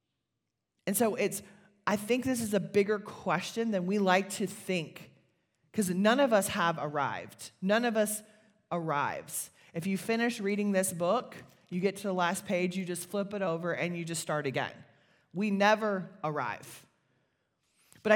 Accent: American